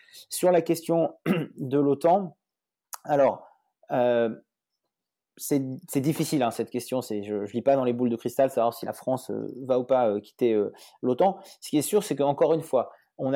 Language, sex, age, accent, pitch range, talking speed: French, male, 30-49, French, 125-155 Hz, 200 wpm